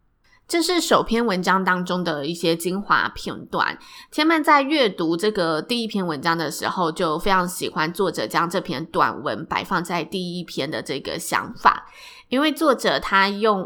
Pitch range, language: 180-250 Hz, Chinese